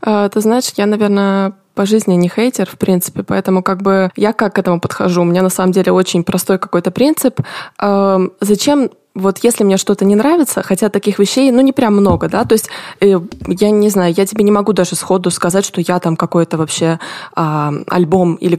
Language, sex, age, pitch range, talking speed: Russian, female, 20-39, 185-230 Hz, 205 wpm